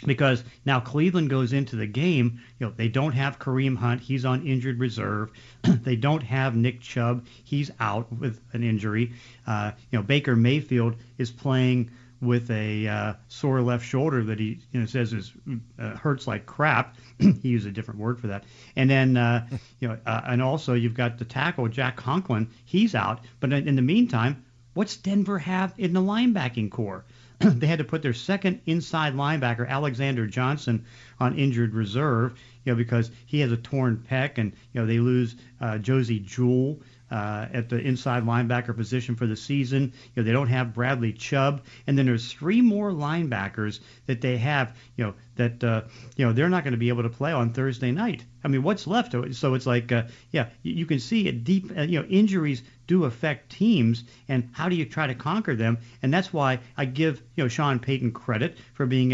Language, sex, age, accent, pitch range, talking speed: English, male, 40-59, American, 120-140 Hz, 200 wpm